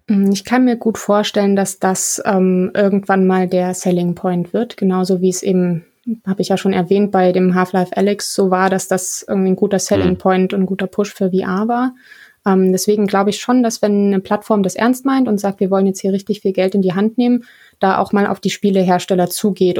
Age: 20-39